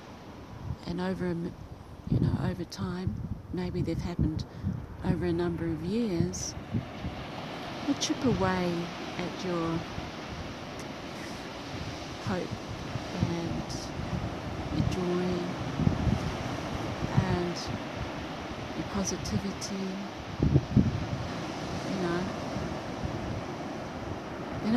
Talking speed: 75 wpm